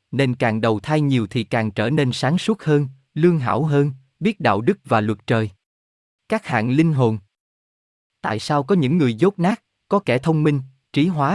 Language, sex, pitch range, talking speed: Vietnamese, male, 115-155 Hz, 200 wpm